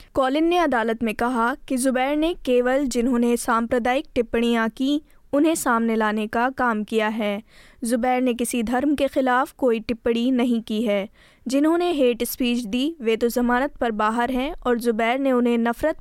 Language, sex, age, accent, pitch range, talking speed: Hindi, female, 20-39, native, 230-265 Hz, 170 wpm